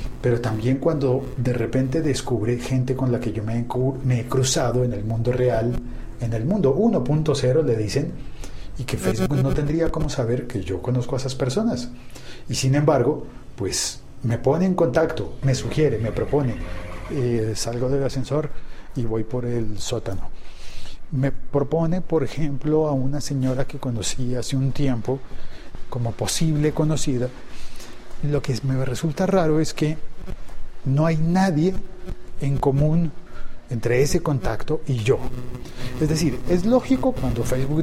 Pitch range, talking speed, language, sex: 120-155 Hz, 150 wpm, Spanish, male